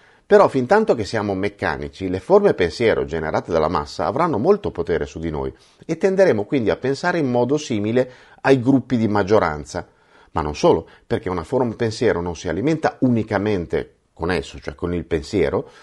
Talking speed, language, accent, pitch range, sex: 180 wpm, Italian, native, 95-155 Hz, male